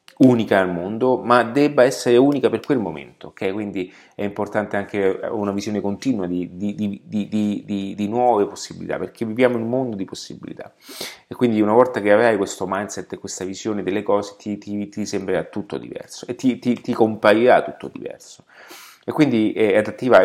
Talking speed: 185 wpm